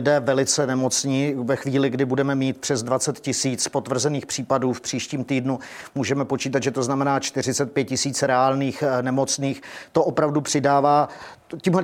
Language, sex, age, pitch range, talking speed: Czech, male, 50-69, 135-150 Hz, 145 wpm